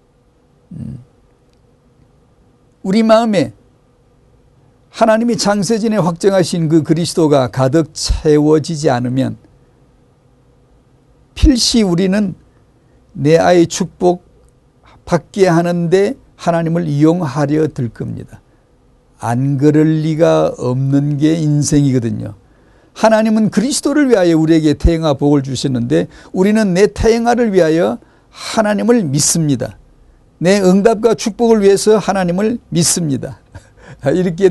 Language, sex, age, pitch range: Korean, male, 50-69, 130-195 Hz